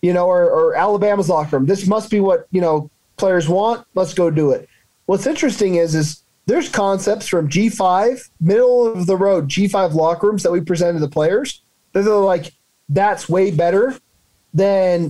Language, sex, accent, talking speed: English, male, American, 170 wpm